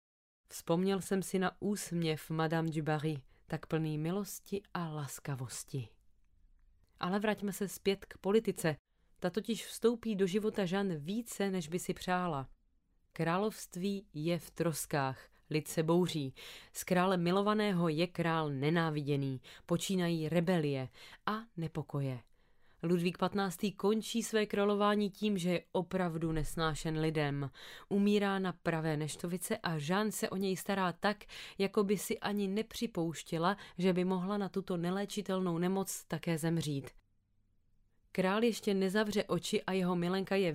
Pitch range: 155-195 Hz